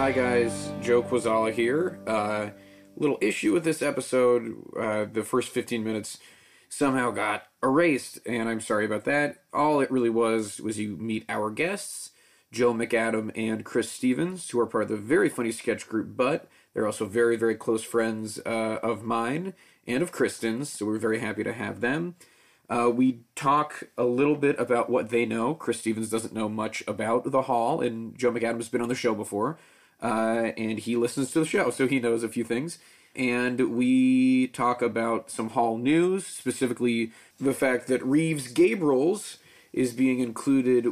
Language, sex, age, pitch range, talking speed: English, male, 30-49, 110-130 Hz, 180 wpm